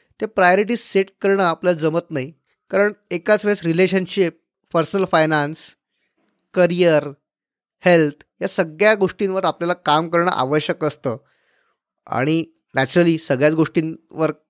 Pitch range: 150-190 Hz